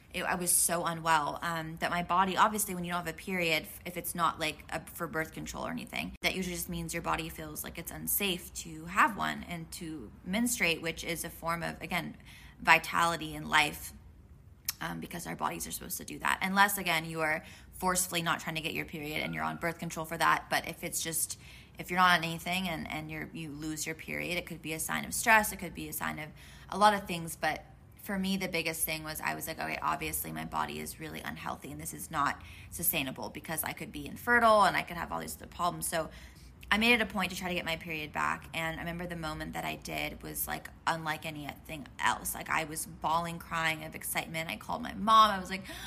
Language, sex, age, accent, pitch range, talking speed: English, female, 20-39, American, 155-190 Hz, 245 wpm